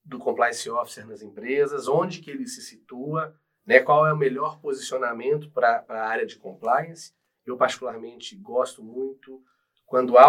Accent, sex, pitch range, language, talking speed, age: Brazilian, male, 120-170 Hz, Portuguese, 155 wpm, 40-59